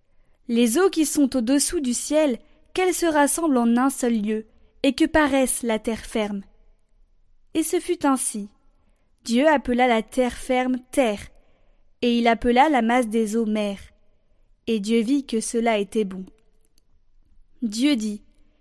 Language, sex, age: French, female, 20-39